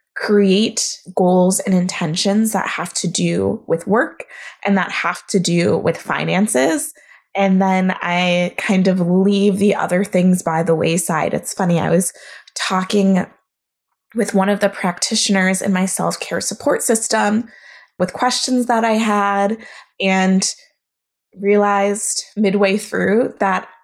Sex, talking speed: female, 135 wpm